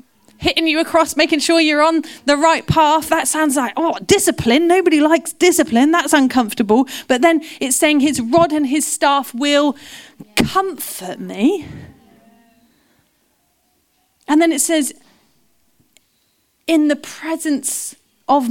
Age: 30-49